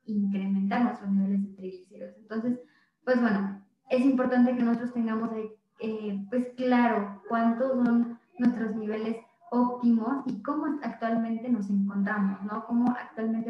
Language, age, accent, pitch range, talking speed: Spanish, 20-39, Mexican, 210-240 Hz, 135 wpm